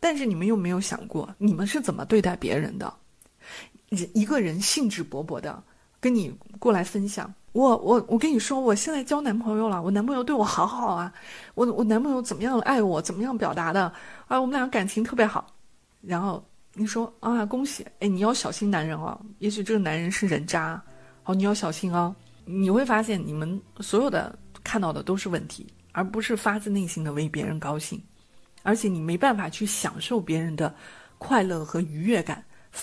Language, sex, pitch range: Chinese, female, 170-225 Hz